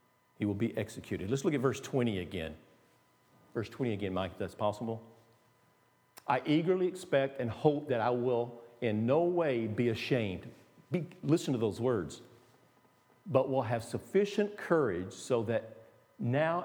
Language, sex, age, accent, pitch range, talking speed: English, male, 50-69, American, 120-180 Hz, 150 wpm